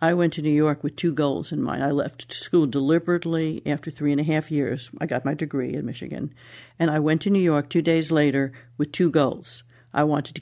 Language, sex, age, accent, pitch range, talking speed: English, female, 60-79, American, 145-175 Hz, 235 wpm